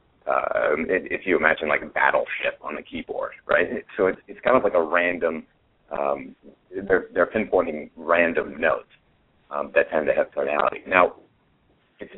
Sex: male